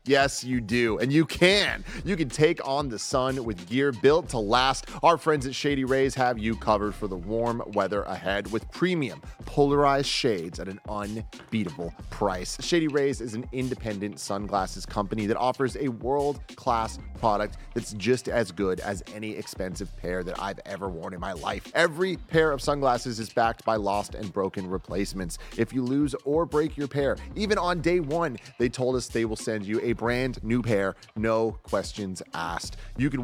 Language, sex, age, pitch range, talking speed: English, male, 30-49, 105-140 Hz, 185 wpm